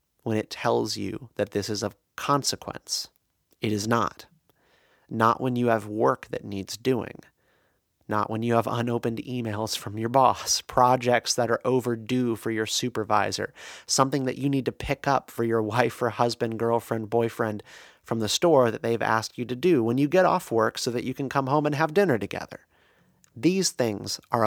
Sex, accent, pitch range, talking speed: male, American, 110-135 Hz, 190 wpm